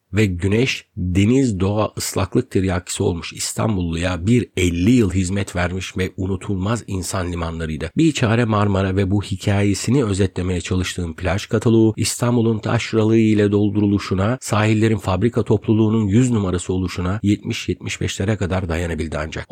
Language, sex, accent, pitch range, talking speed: Turkish, male, native, 95-115 Hz, 125 wpm